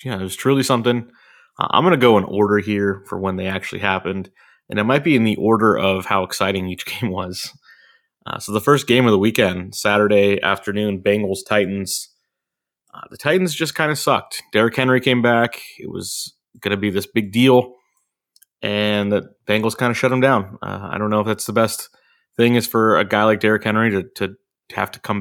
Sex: male